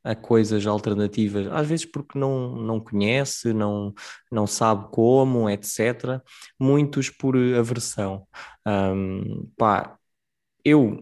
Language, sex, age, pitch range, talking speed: Portuguese, male, 20-39, 105-120 Hz, 100 wpm